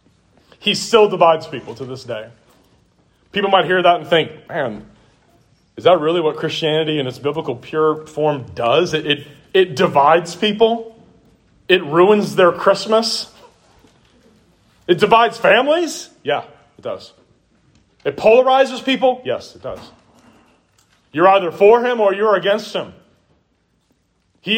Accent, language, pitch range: American, English, 160-215 Hz